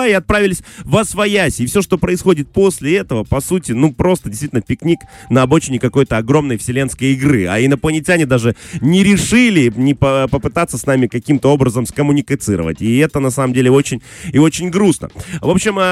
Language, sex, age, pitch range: Russian, male, 20-39, 120-165 Hz